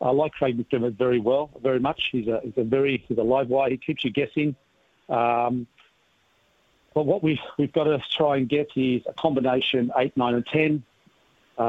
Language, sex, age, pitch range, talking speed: English, male, 50-69, 120-140 Hz, 195 wpm